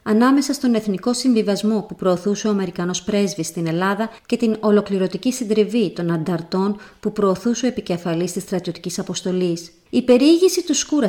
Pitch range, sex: 180-230 Hz, female